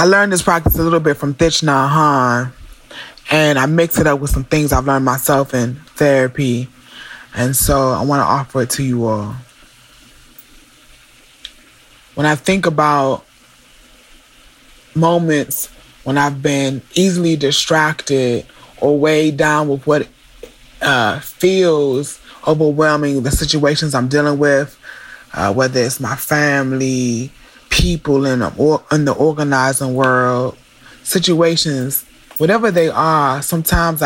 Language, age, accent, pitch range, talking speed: English, 20-39, American, 130-155 Hz, 125 wpm